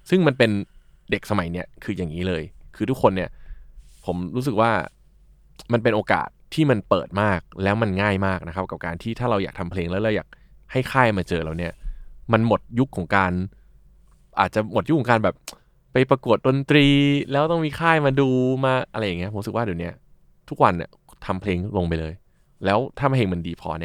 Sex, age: male, 20-39